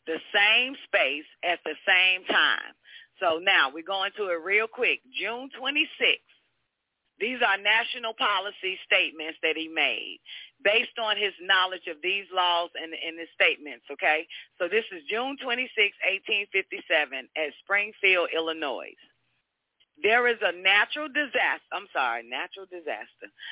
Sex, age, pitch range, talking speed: female, 40-59, 170-235 Hz, 140 wpm